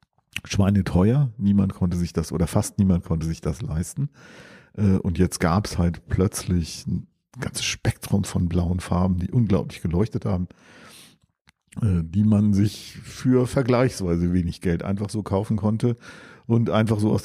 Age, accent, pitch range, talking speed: 50-69, German, 95-125 Hz, 160 wpm